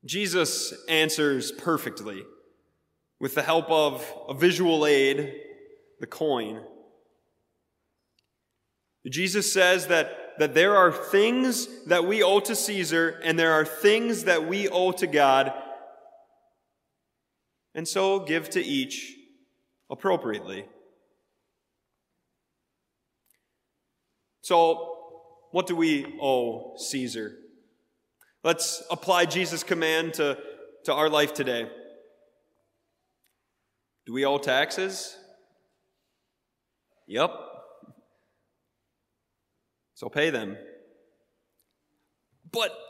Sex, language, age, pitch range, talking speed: male, English, 30-49, 155-235 Hz, 90 wpm